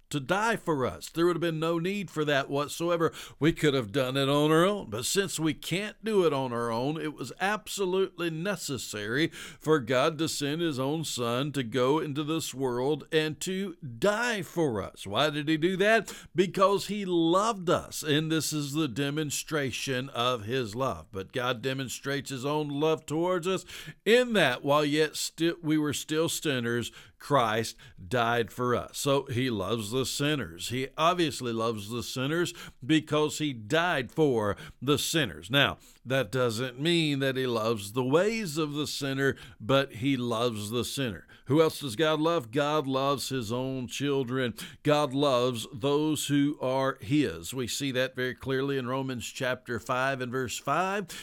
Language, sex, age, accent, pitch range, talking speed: English, male, 60-79, American, 130-160 Hz, 175 wpm